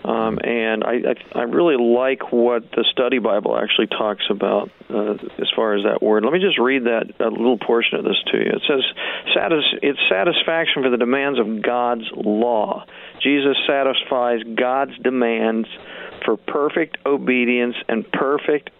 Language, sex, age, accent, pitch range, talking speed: English, male, 50-69, American, 120-145 Hz, 165 wpm